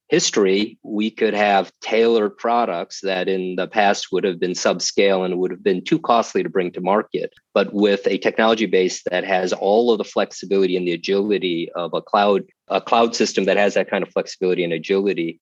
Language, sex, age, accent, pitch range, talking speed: English, male, 40-59, American, 95-120 Hz, 200 wpm